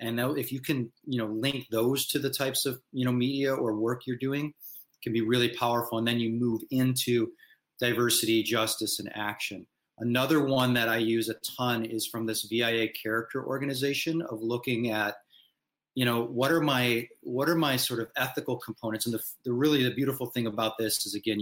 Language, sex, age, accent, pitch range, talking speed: English, male, 30-49, American, 110-130 Hz, 200 wpm